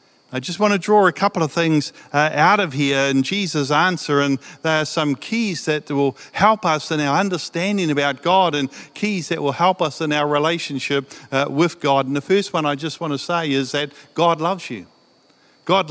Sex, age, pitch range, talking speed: male, 50-69, 140-170 Hz, 200 wpm